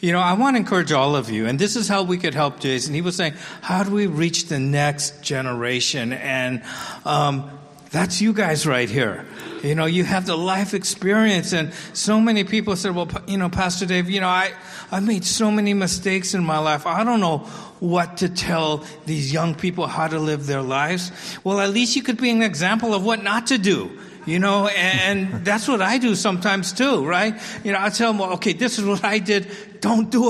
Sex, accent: male, American